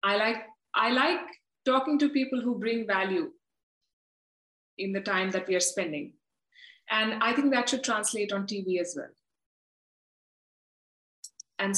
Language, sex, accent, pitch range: English, female, Indian, 195-245 Hz